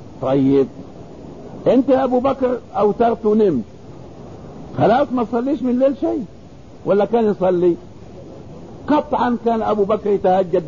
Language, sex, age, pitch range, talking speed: English, male, 50-69, 180-245 Hz, 120 wpm